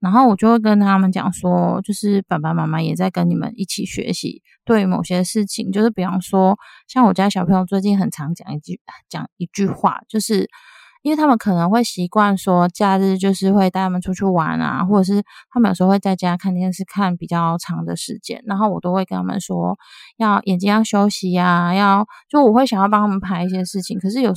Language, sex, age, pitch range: Chinese, female, 20-39, 185-225 Hz